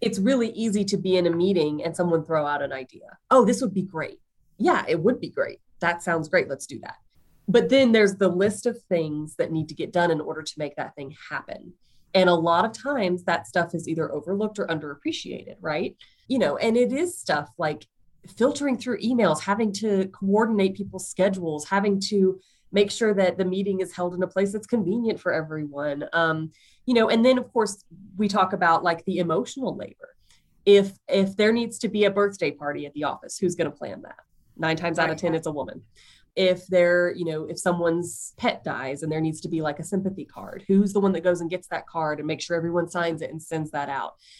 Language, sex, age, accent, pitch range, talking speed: English, female, 30-49, American, 165-215 Hz, 225 wpm